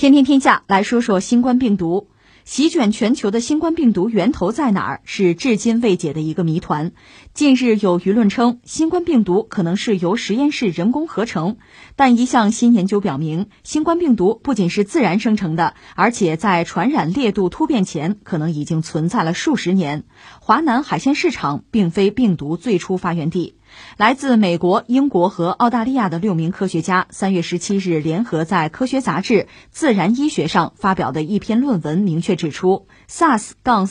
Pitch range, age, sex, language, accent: 175-245 Hz, 20-39, female, Chinese, native